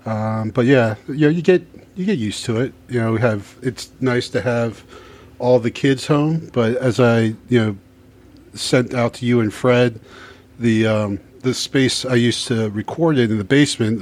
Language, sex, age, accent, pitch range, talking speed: English, male, 40-59, American, 105-125 Hz, 200 wpm